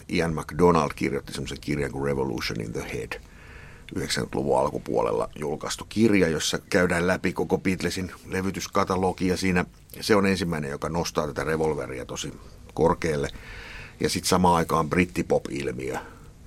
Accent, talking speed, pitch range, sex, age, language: native, 130 wpm, 70-90 Hz, male, 60-79, Finnish